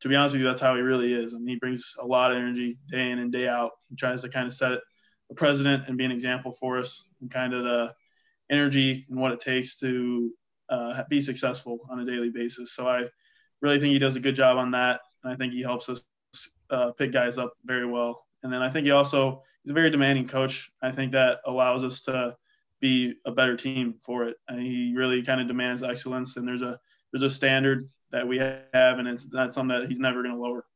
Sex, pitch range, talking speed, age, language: male, 125-130 Hz, 250 wpm, 20-39, English